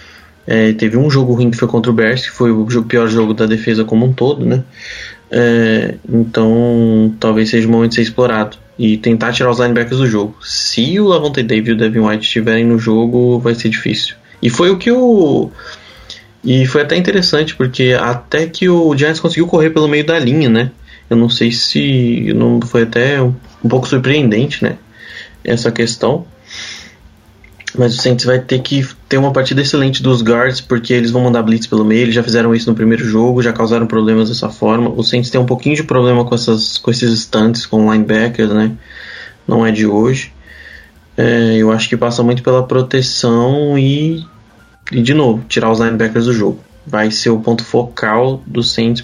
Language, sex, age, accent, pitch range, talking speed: Portuguese, male, 20-39, Brazilian, 110-125 Hz, 195 wpm